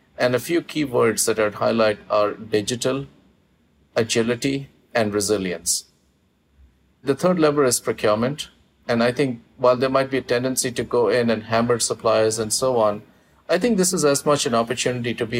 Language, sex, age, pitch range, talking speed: English, male, 50-69, 110-125 Hz, 180 wpm